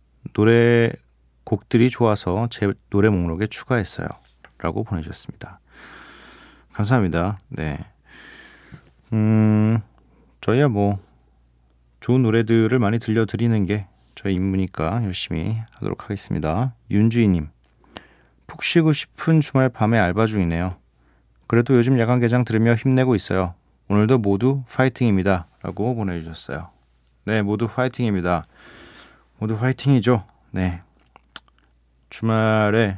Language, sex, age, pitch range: Korean, male, 40-59, 90-120 Hz